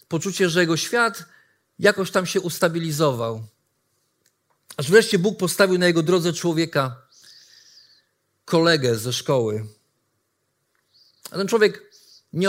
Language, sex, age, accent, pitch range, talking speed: Polish, male, 50-69, native, 115-170 Hz, 110 wpm